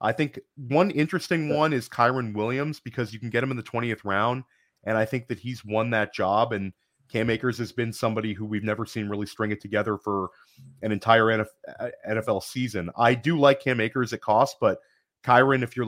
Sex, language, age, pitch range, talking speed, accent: male, English, 30-49, 110-130 Hz, 210 wpm, American